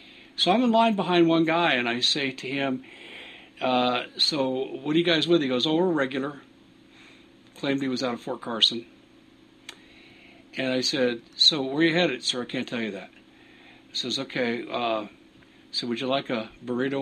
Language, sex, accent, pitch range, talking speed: English, male, American, 120-175 Hz, 200 wpm